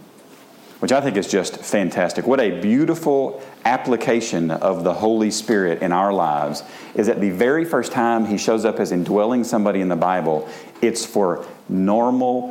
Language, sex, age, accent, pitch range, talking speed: English, male, 40-59, American, 95-125 Hz, 170 wpm